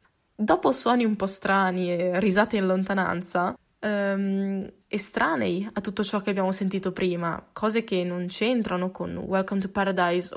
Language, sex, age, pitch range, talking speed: Italian, female, 20-39, 185-245 Hz, 155 wpm